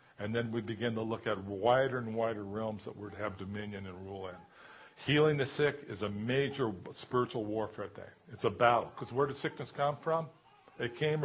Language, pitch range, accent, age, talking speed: English, 120-150 Hz, American, 50-69, 215 wpm